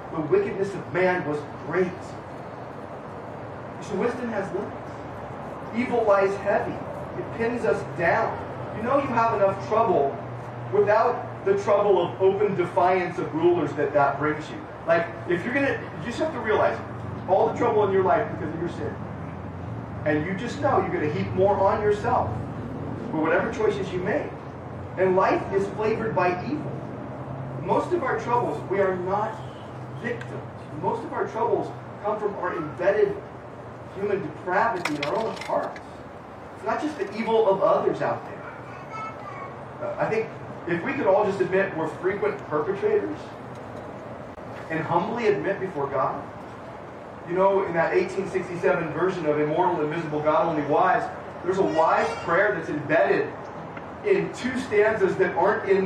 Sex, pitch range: male, 155-205 Hz